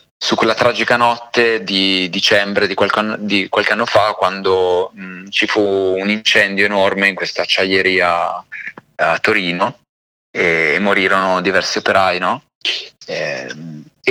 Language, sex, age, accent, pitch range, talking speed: Italian, male, 20-39, native, 95-120 Hz, 135 wpm